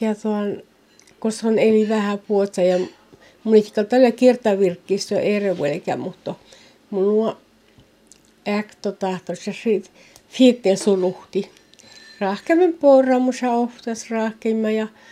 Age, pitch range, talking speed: 60-79, 195-225 Hz, 125 wpm